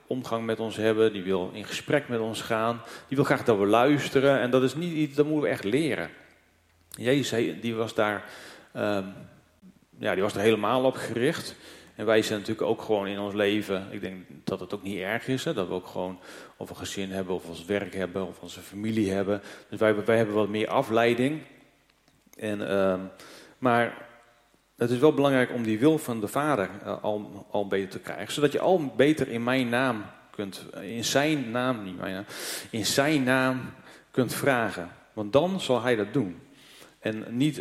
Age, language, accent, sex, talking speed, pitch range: 40-59, Dutch, Dutch, male, 200 wpm, 105-130 Hz